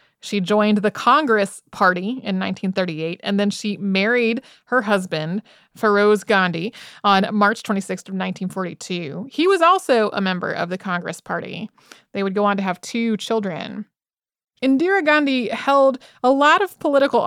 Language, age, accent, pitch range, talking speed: English, 30-49, American, 190-235 Hz, 150 wpm